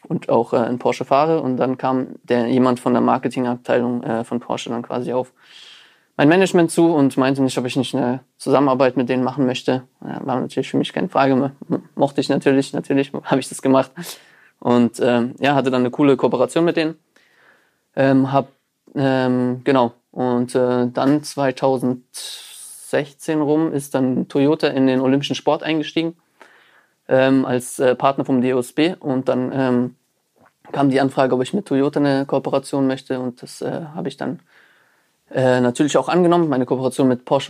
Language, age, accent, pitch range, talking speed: German, 20-39, German, 125-140 Hz, 175 wpm